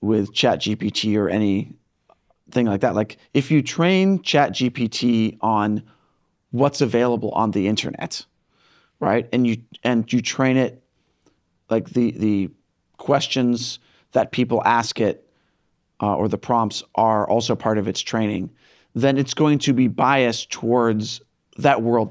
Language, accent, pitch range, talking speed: English, American, 105-130 Hz, 145 wpm